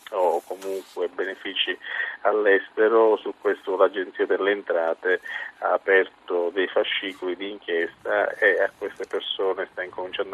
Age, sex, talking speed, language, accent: 40-59, male, 120 wpm, Italian, native